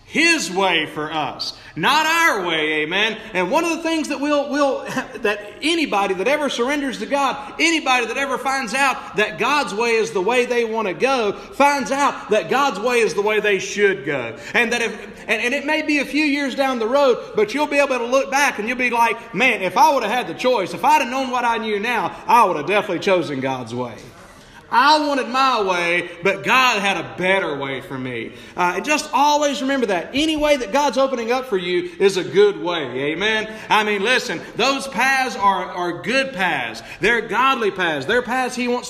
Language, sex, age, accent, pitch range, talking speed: English, male, 40-59, American, 195-270 Hz, 220 wpm